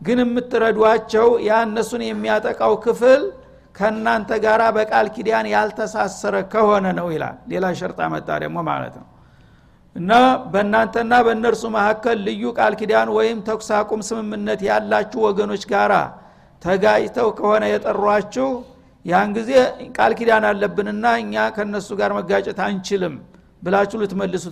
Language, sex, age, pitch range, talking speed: Amharic, male, 60-79, 200-225 Hz, 105 wpm